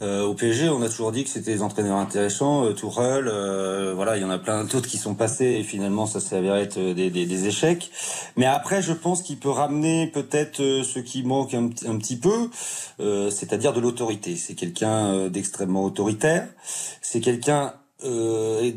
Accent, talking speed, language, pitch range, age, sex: French, 185 wpm, French, 100-135 Hz, 30-49, male